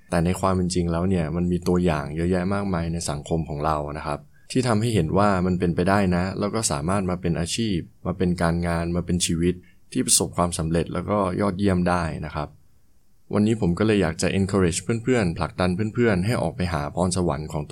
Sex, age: male, 20-39